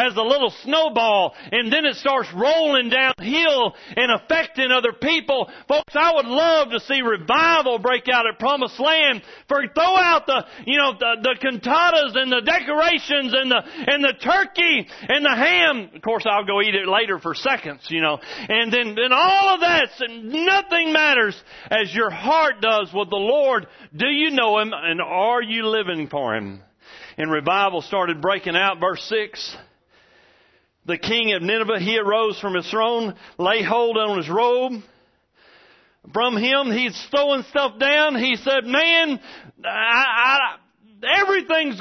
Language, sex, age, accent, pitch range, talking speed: English, male, 40-59, American, 185-280 Hz, 160 wpm